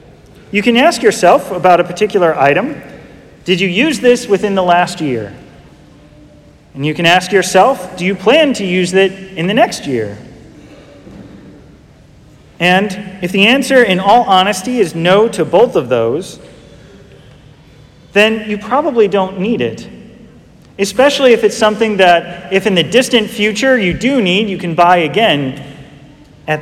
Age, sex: 40-59, male